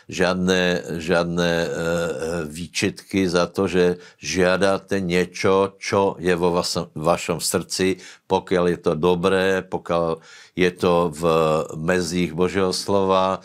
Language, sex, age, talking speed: Slovak, male, 60-79, 115 wpm